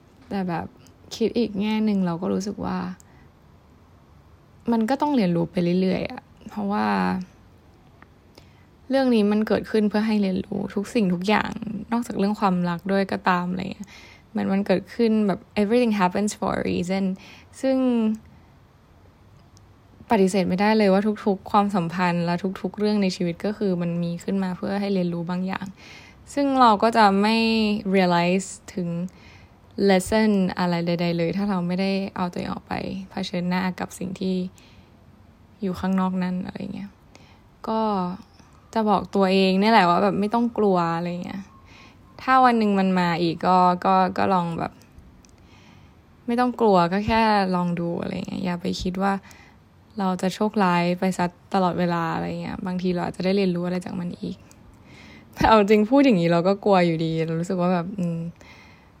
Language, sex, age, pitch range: Thai, female, 10-29, 175-210 Hz